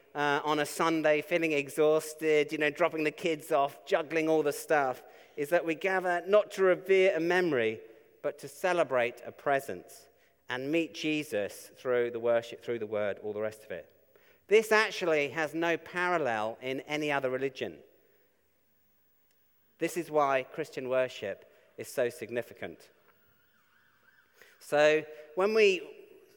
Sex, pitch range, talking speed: male, 140-190 Hz, 145 wpm